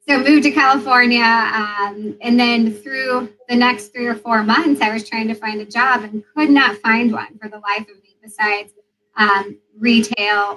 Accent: American